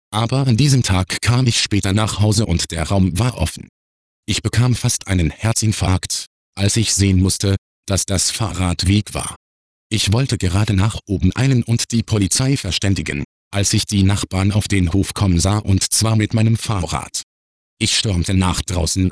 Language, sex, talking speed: German, male, 175 wpm